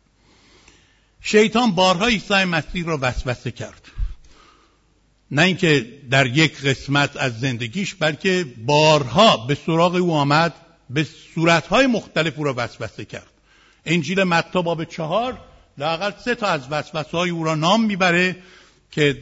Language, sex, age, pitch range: Persian, male, 60-79, 145-195 Hz